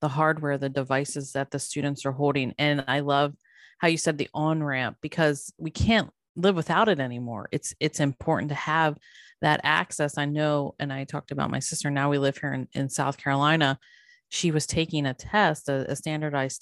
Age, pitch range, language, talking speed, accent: 30-49, 135-160 Hz, English, 200 wpm, American